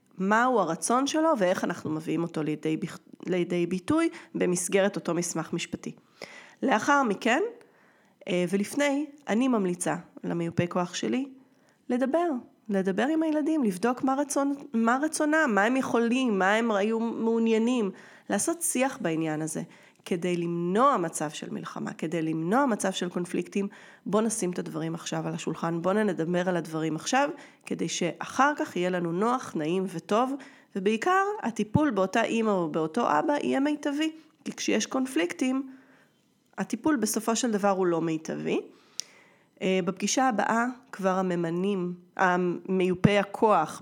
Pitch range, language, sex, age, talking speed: 175-255 Hz, Hebrew, female, 30-49, 135 wpm